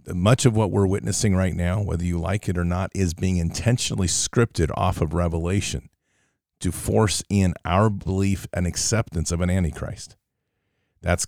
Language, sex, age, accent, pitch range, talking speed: English, male, 50-69, American, 85-105 Hz, 165 wpm